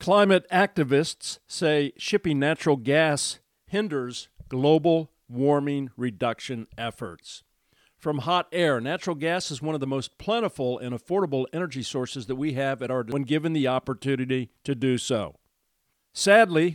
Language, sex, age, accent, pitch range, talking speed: English, male, 50-69, American, 125-160 Hz, 140 wpm